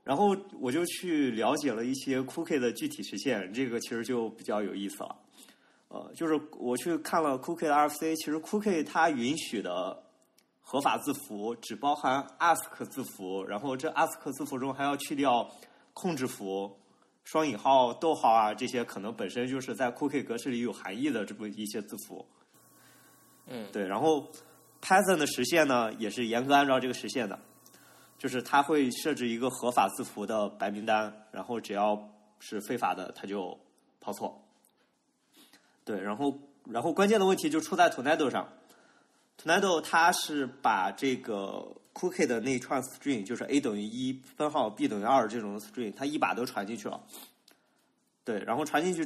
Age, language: 20-39, Chinese